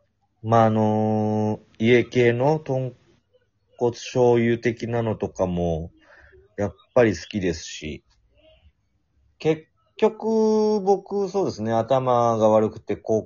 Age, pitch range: 30-49, 95-115 Hz